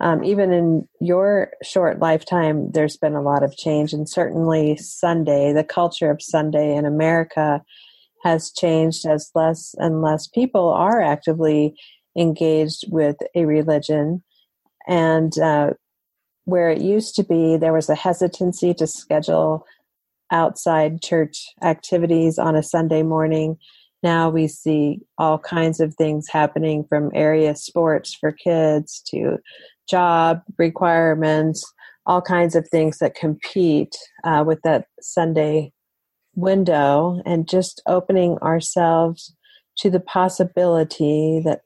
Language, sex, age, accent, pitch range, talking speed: English, female, 40-59, American, 155-170 Hz, 130 wpm